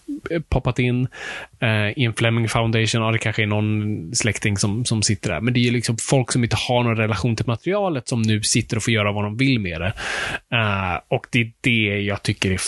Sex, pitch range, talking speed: male, 110-130 Hz, 225 wpm